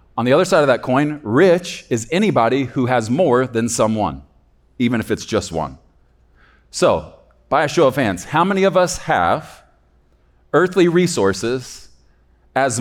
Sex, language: male, English